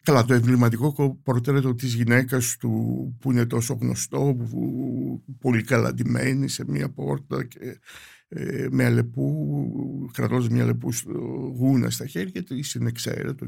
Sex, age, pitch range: male, 60-79, 120-150 Hz